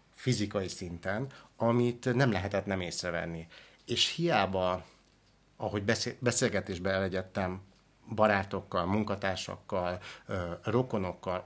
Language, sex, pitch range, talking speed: Hungarian, male, 95-115 Hz, 85 wpm